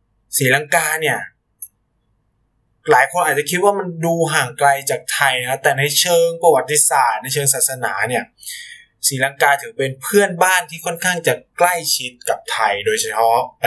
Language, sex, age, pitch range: Thai, male, 20-39, 135-225 Hz